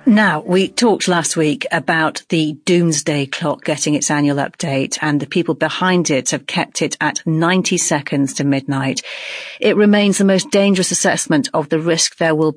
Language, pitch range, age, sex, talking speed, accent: English, 155-200 Hz, 40-59, female, 175 wpm, British